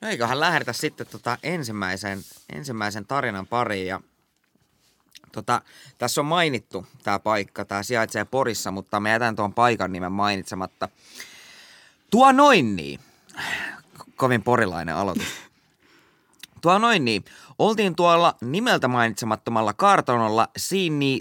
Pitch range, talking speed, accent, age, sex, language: 110-160 Hz, 115 wpm, native, 20-39, male, Finnish